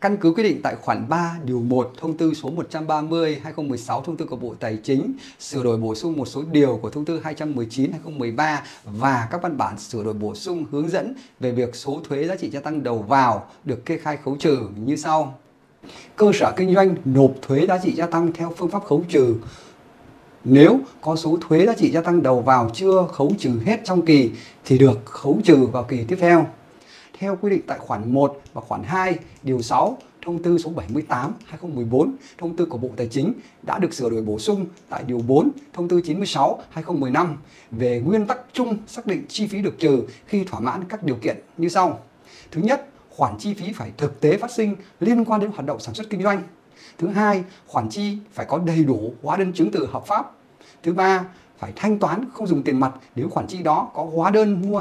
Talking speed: 220 wpm